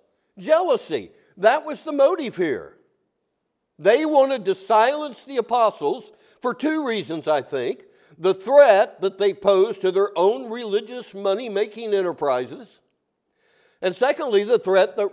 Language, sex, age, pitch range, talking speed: English, male, 60-79, 190-310 Hz, 130 wpm